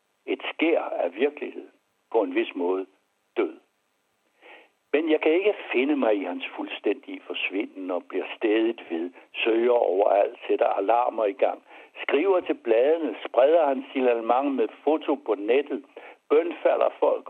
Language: Danish